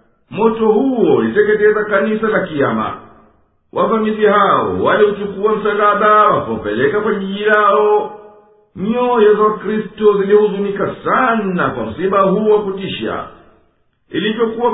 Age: 50-69